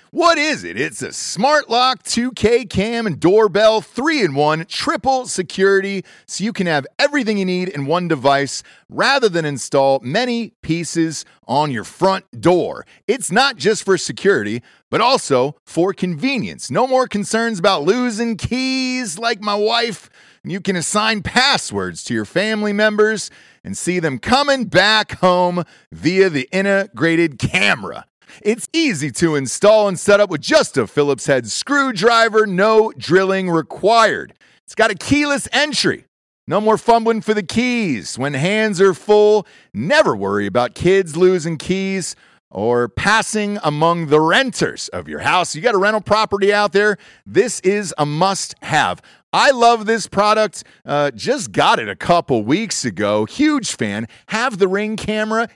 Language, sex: English, male